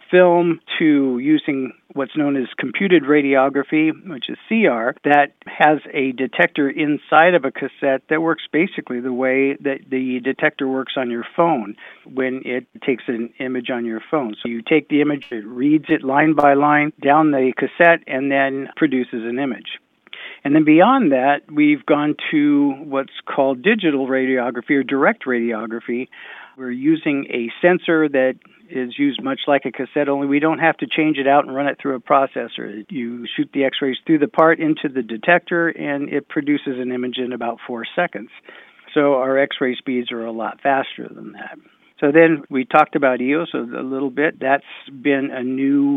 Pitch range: 130-155 Hz